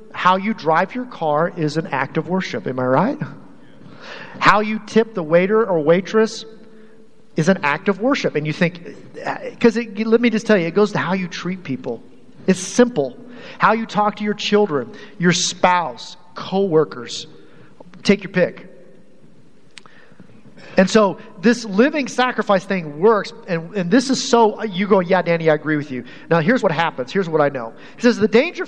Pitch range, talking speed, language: 170-225 Hz, 180 wpm, English